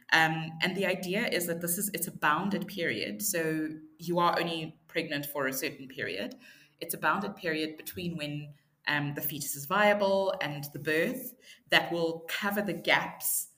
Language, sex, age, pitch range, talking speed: English, female, 20-39, 145-170 Hz, 180 wpm